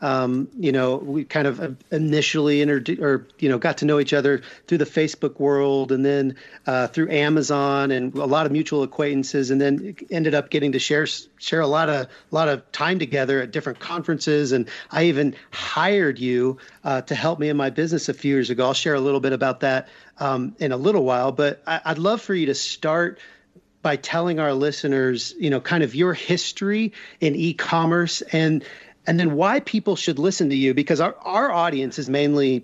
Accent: American